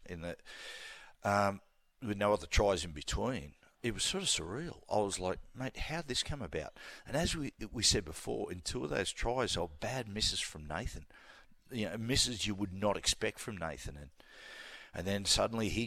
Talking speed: 200 wpm